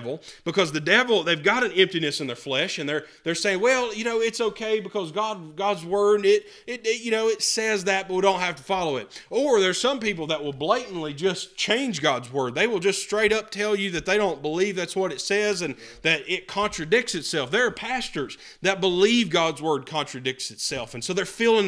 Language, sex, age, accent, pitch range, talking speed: English, male, 30-49, American, 155-200 Hz, 225 wpm